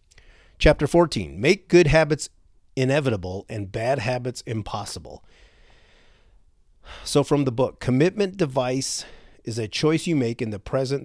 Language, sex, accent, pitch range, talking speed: English, male, American, 95-125 Hz, 130 wpm